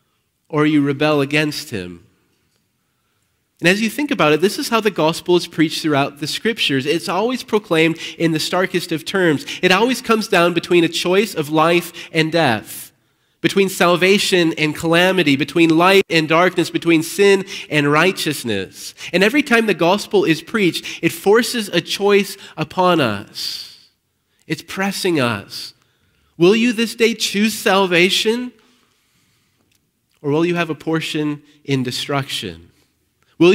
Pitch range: 135-180 Hz